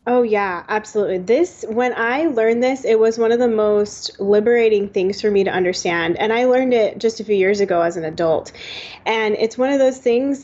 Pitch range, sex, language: 200-255 Hz, female, English